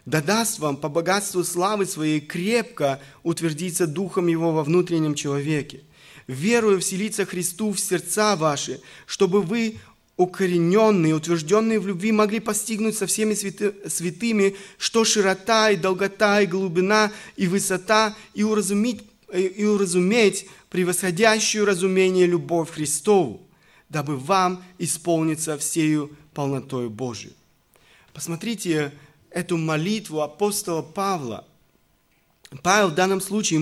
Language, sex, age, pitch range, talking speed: Russian, male, 20-39, 165-215 Hz, 110 wpm